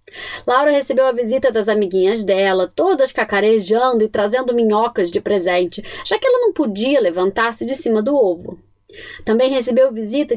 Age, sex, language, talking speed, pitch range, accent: 20-39, female, Portuguese, 160 wpm, 220-325 Hz, Brazilian